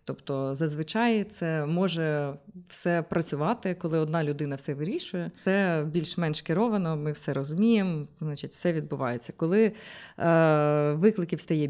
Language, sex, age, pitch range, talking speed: Ukrainian, female, 20-39, 155-195 Hz, 125 wpm